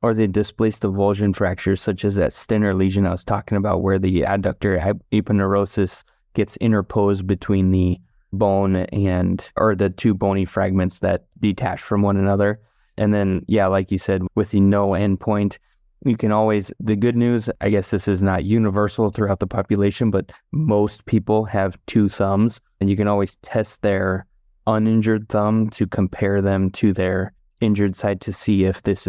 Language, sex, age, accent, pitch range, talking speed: English, male, 20-39, American, 100-110 Hz, 170 wpm